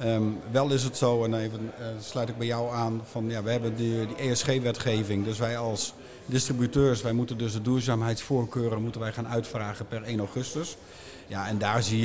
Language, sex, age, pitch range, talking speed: Dutch, male, 50-69, 115-130 Hz, 190 wpm